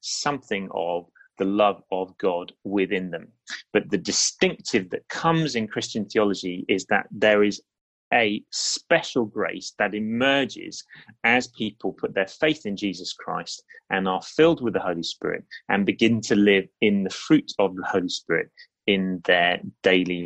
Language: English